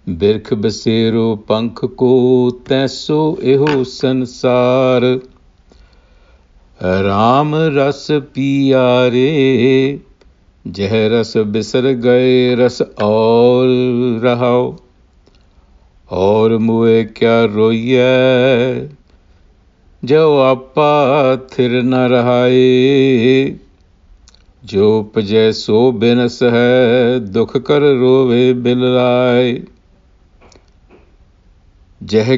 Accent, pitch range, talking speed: Indian, 100-130 Hz, 65 wpm